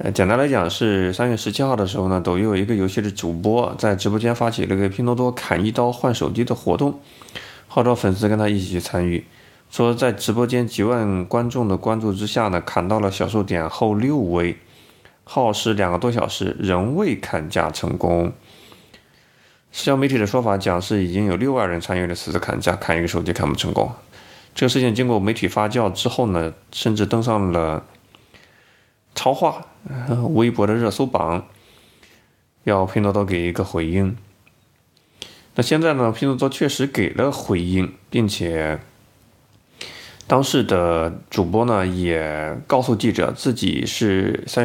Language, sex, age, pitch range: Chinese, male, 20-39, 95-120 Hz